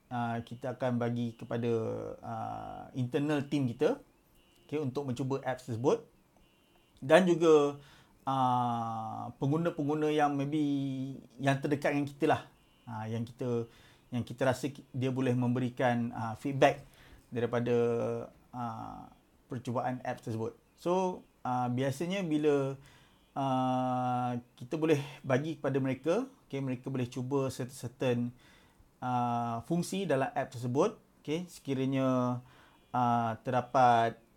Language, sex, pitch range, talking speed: Malay, male, 120-145 Hz, 110 wpm